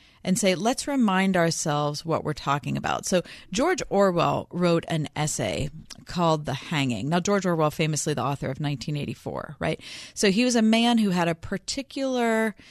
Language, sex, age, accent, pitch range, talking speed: English, female, 40-59, American, 150-195 Hz, 170 wpm